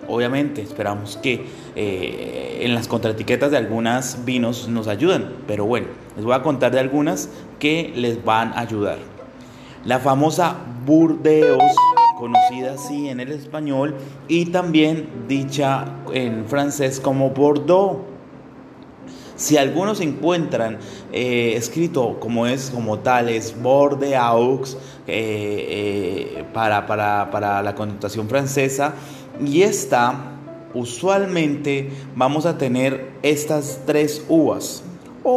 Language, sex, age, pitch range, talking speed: Spanish, male, 30-49, 120-150 Hz, 115 wpm